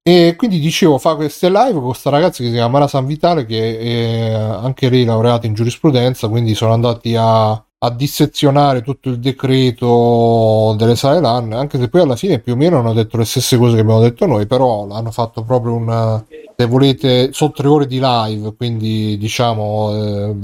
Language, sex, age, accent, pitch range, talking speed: Italian, male, 30-49, native, 115-135 Hz, 195 wpm